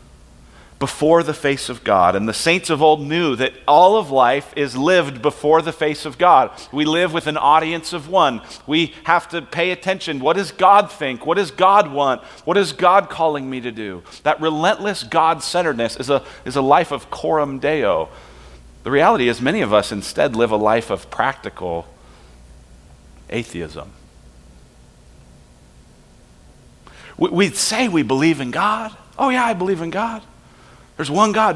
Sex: male